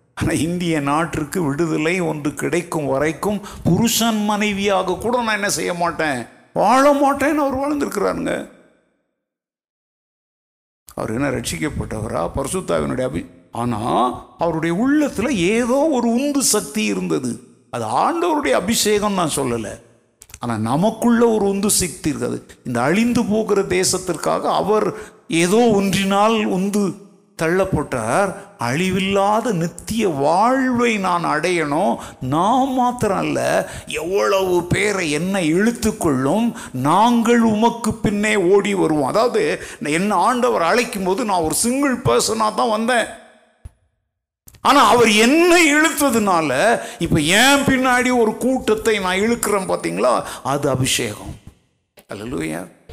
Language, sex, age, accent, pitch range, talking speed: Tamil, male, 50-69, native, 165-235 Hz, 105 wpm